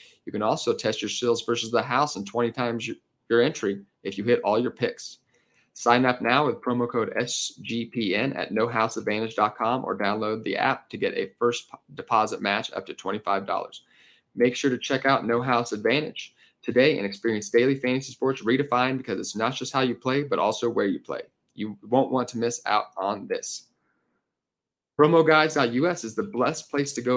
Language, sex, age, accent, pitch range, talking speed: English, male, 30-49, American, 110-125 Hz, 185 wpm